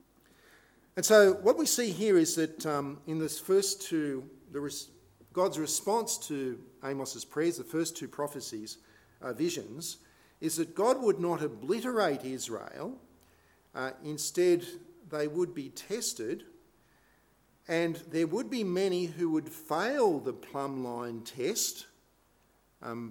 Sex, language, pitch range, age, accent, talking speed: male, English, 125-165 Hz, 50-69, Australian, 130 wpm